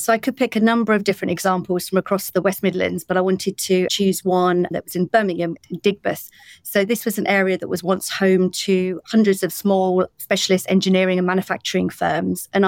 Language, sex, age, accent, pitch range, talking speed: English, female, 40-59, British, 185-205 Hz, 210 wpm